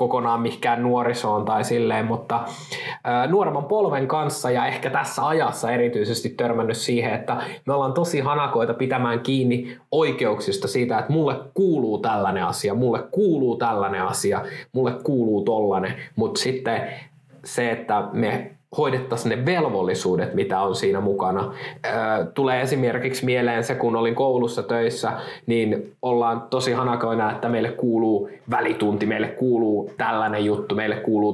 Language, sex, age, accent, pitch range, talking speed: Finnish, male, 20-39, native, 115-130 Hz, 135 wpm